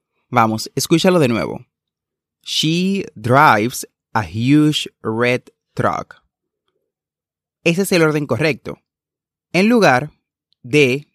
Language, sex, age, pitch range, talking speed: Spanish, male, 30-49, 115-160 Hz, 95 wpm